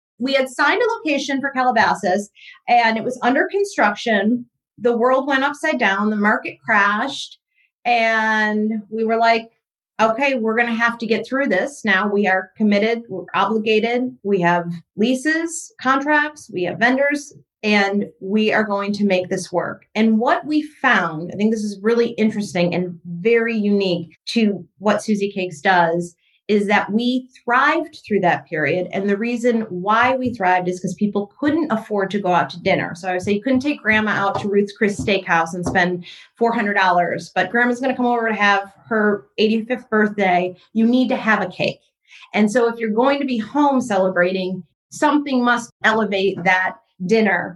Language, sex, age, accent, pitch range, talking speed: English, female, 30-49, American, 185-240 Hz, 180 wpm